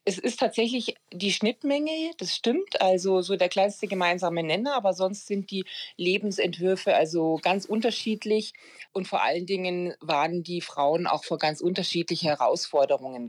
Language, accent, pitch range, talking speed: German, German, 160-195 Hz, 150 wpm